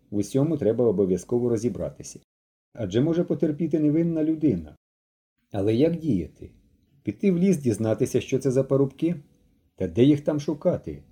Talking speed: 140 wpm